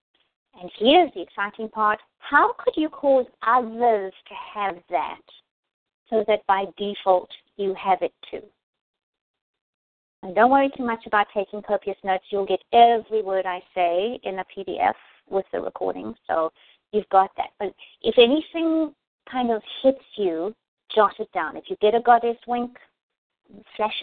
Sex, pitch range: female, 195-265 Hz